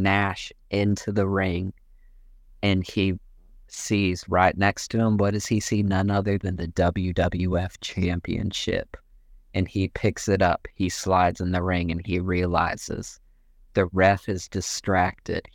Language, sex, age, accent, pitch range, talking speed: English, male, 30-49, American, 90-105 Hz, 145 wpm